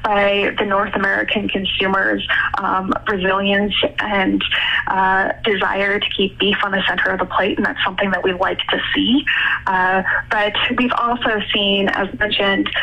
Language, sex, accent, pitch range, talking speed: English, female, American, 190-225 Hz, 160 wpm